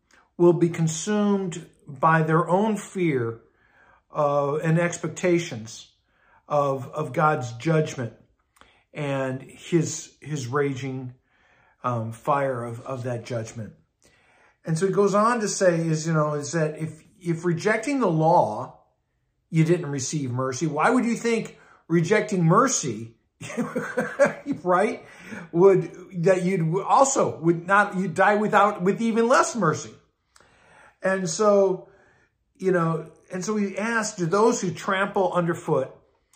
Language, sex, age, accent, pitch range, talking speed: English, male, 50-69, American, 150-195 Hz, 130 wpm